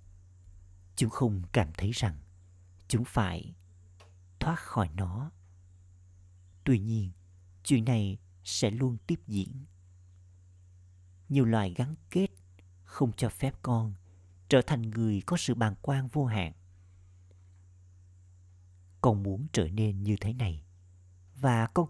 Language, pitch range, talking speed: Vietnamese, 90-115 Hz, 120 wpm